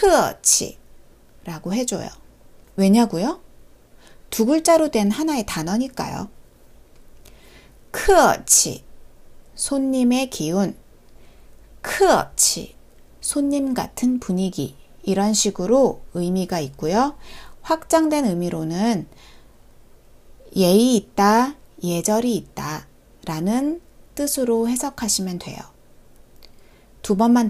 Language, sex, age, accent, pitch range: Korean, female, 30-49, native, 185-265 Hz